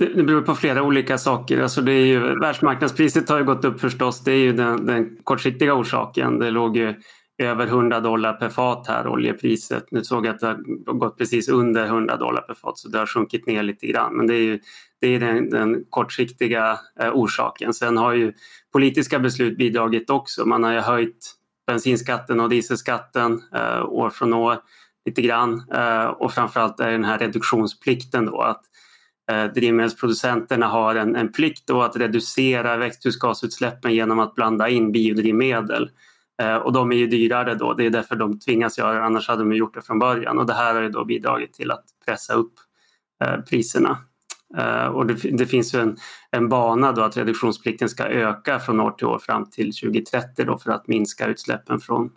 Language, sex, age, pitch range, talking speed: Swedish, male, 20-39, 115-125 Hz, 190 wpm